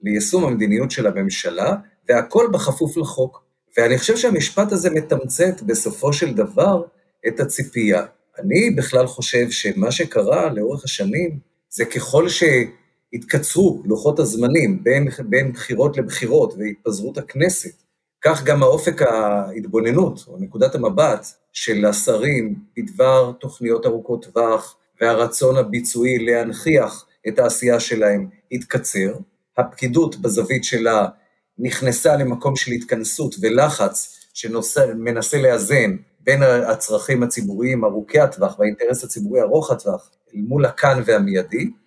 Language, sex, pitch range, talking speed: Hebrew, male, 120-180 Hz, 110 wpm